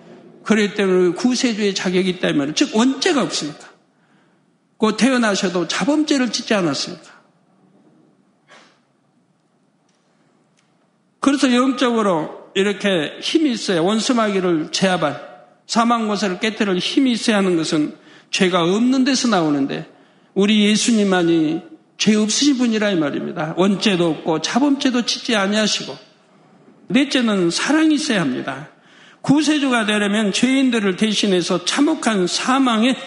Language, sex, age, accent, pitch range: Korean, male, 60-79, native, 180-245 Hz